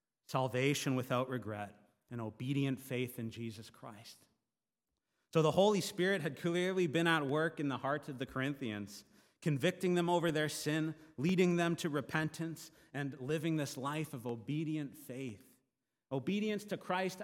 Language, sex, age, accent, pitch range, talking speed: English, male, 30-49, American, 130-175 Hz, 150 wpm